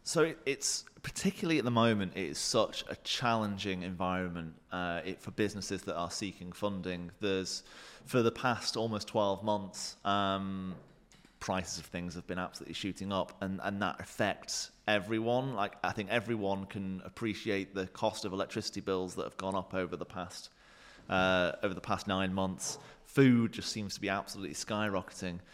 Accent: British